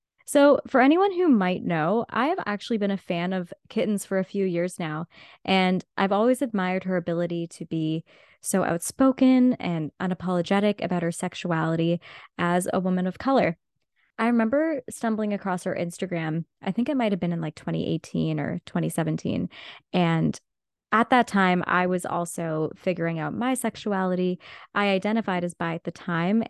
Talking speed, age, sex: 170 wpm, 20-39, female